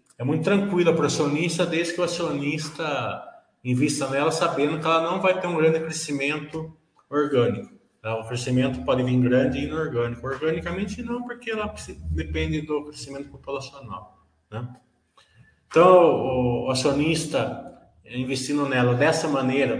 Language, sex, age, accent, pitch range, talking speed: Portuguese, male, 20-39, Brazilian, 120-160 Hz, 135 wpm